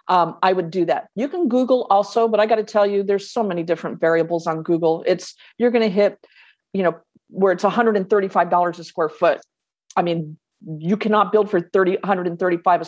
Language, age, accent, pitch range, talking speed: English, 50-69, American, 180-235 Hz, 200 wpm